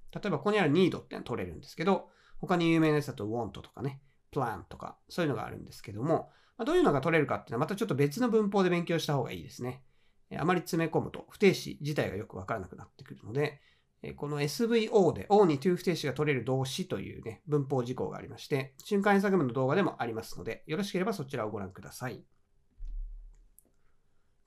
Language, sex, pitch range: Japanese, male, 130-205 Hz